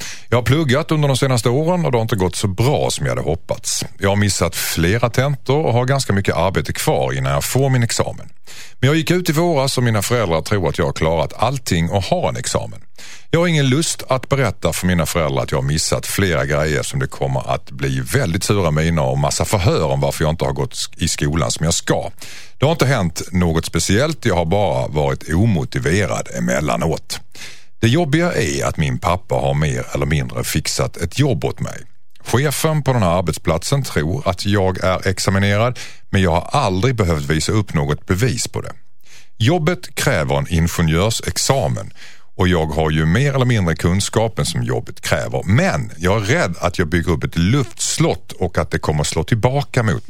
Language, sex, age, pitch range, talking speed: Swedish, male, 50-69, 85-125 Hz, 205 wpm